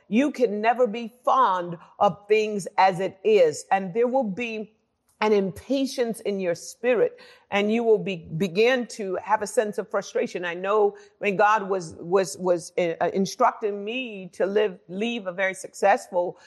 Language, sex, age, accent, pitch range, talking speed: English, female, 50-69, American, 190-240 Hz, 165 wpm